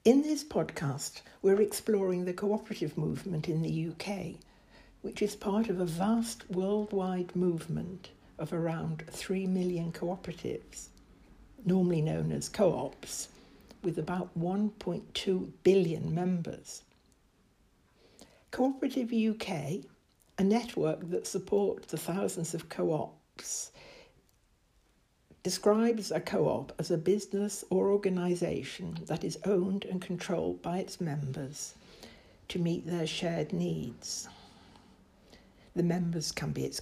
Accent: British